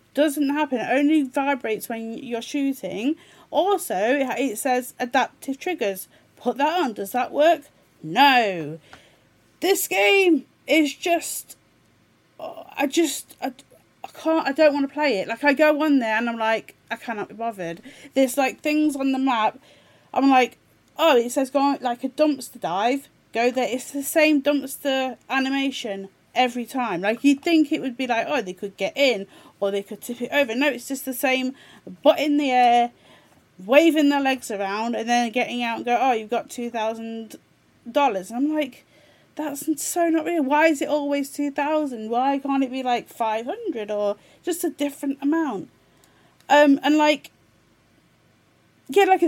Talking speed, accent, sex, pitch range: 175 wpm, British, female, 230-295 Hz